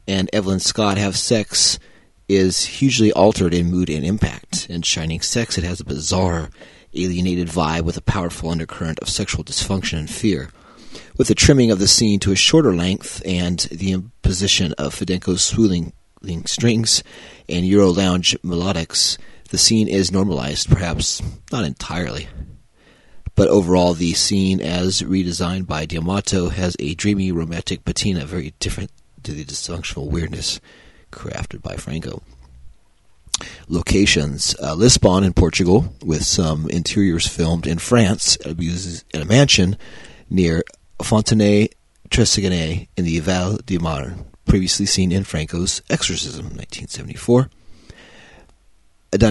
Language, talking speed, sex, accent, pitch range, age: English, 130 wpm, male, American, 85-100 Hz, 30-49